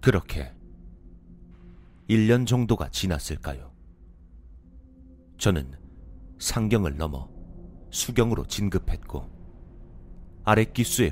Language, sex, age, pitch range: Korean, male, 40-59, 80-100 Hz